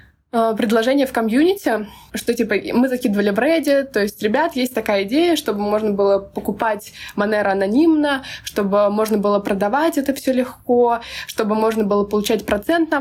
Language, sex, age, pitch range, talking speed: Russian, female, 20-39, 215-280 Hz, 150 wpm